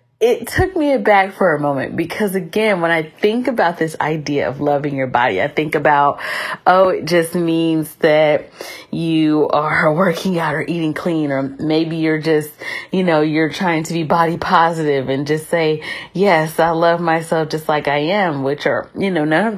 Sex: female